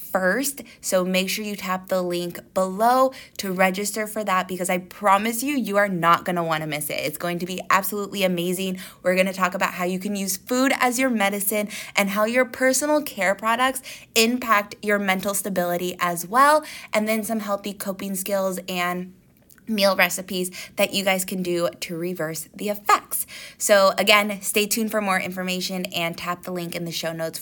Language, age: English, 20-39